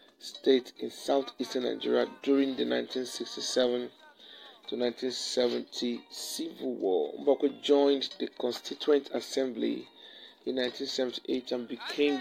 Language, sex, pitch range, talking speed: English, male, 125-145 Hz, 100 wpm